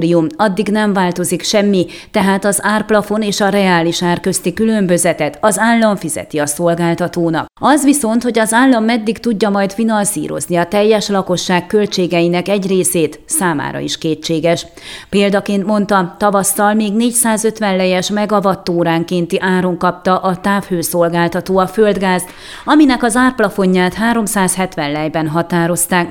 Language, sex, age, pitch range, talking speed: Hungarian, female, 30-49, 175-215 Hz, 125 wpm